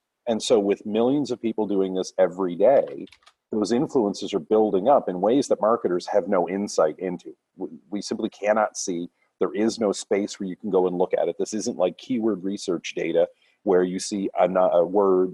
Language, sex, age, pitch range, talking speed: English, male, 40-59, 90-125 Hz, 200 wpm